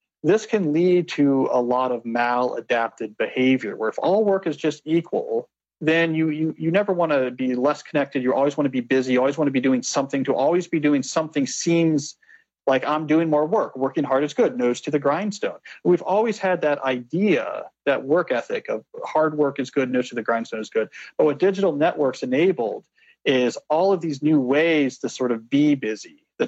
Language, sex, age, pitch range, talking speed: English, male, 40-59, 130-175 Hz, 215 wpm